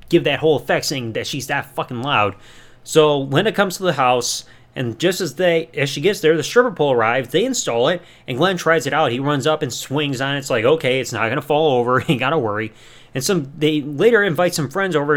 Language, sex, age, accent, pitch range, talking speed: English, male, 30-49, American, 130-185 Hz, 245 wpm